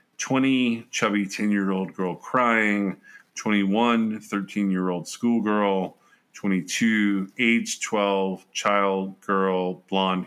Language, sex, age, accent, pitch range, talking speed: English, male, 40-59, American, 95-115 Hz, 80 wpm